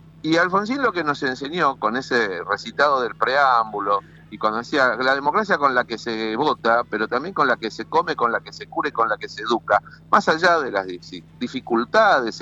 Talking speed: 210 wpm